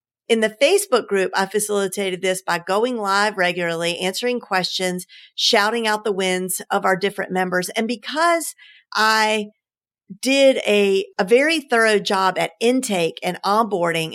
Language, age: English, 50-69